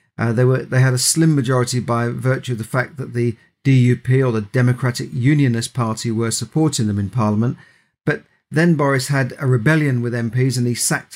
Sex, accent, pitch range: male, British, 120-140 Hz